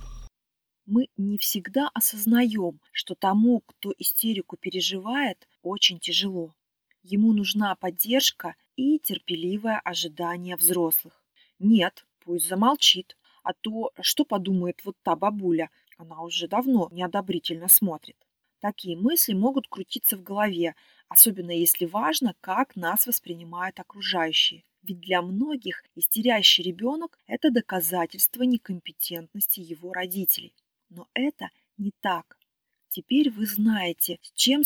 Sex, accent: female, native